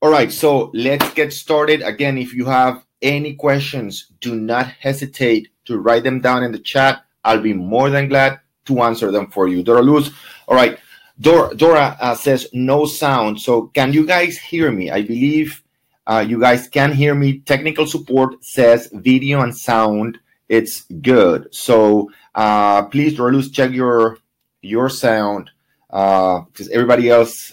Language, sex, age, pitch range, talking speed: English, male, 30-49, 110-140 Hz, 170 wpm